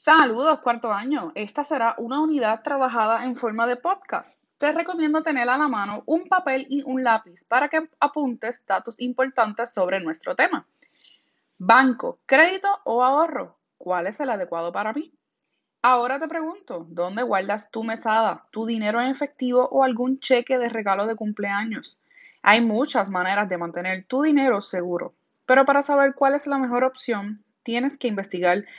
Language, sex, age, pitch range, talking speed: Spanish, female, 20-39, 210-285 Hz, 165 wpm